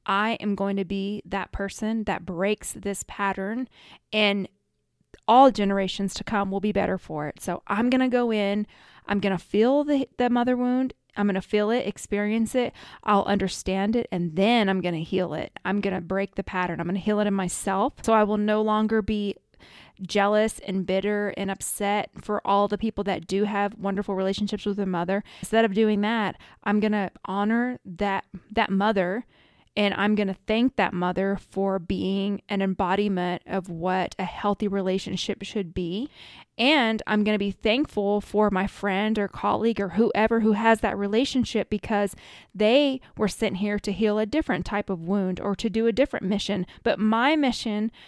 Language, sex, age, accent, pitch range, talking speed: English, female, 20-39, American, 195-220 Hz, 195 wpm